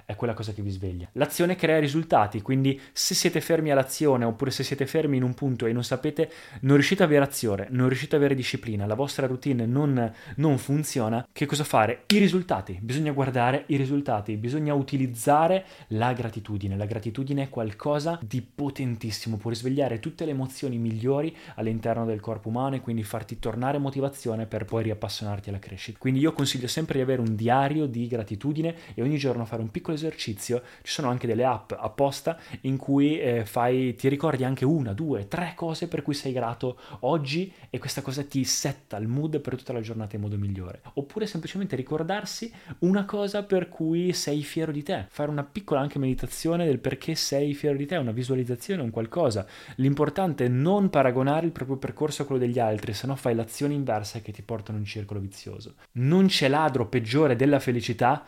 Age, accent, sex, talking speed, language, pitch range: 20-39, native, male, 190 wpm, Italian, 115-150 Hz